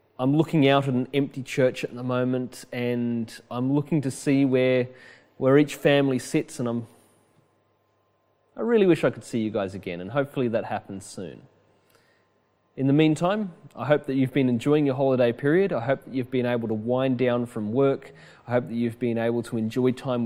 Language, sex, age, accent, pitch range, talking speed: English, male, 30-49, Australian, 115-140 Hz, 200 wpm